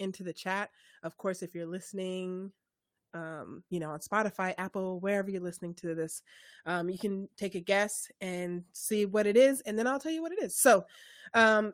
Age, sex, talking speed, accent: 20-39, female, 205 wpm, American